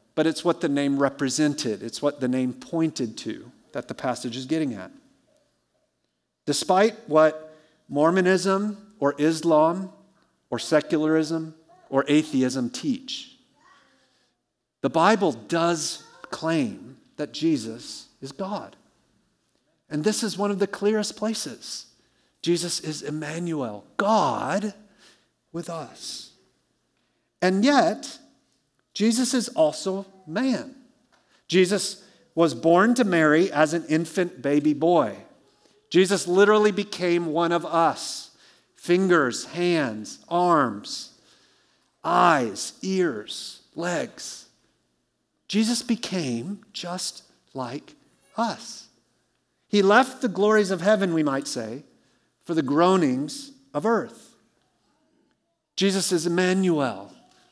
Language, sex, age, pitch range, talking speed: English, male, 50-69, 155-210 Hz, 105 wpm